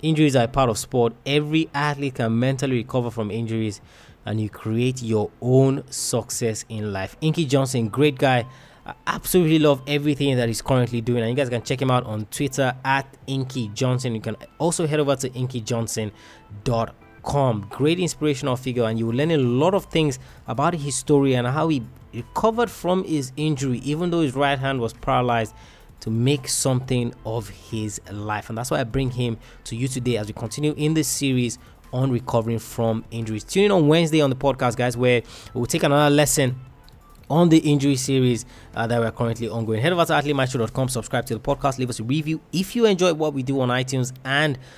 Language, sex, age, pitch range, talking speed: English, male, 20-39, 115-145 Hz, 195 wpm